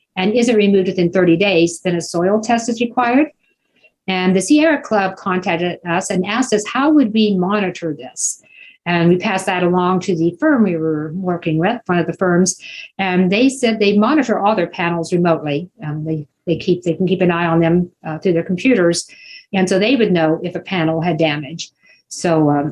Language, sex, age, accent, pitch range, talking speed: English, female, 50-69, American, 170-205 Hz, 205 wpm